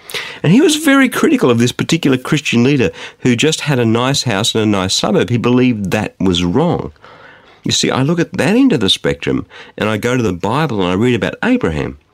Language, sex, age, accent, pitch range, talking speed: English, male, 50-69, Australian, 95-155 Hz, 225 wpm